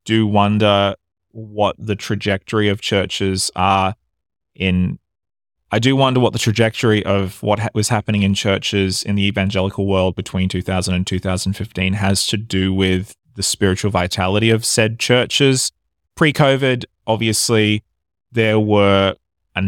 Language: English